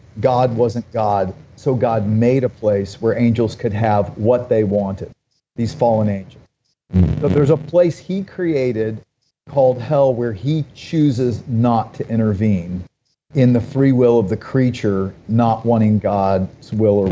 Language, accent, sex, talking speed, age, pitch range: English, American, male, 155 wpm, 40-59, 110-145 Hz